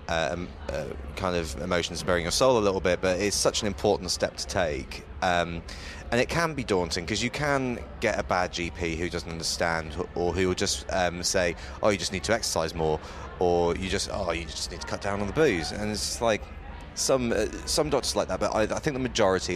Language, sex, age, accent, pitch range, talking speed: English, male, 30-49, British, 85-100 Hz, 235 wpm